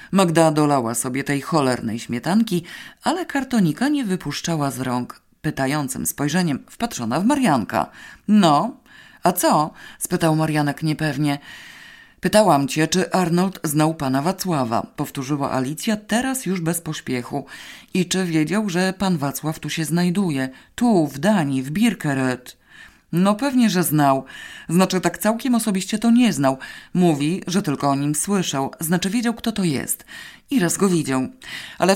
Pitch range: 140-190 Hz